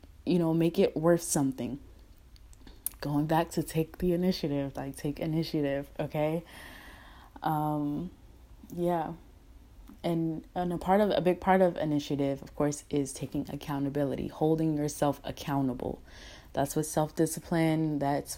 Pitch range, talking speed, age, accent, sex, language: 145-175 Hz, 130 wpm, 20-39, American, female, English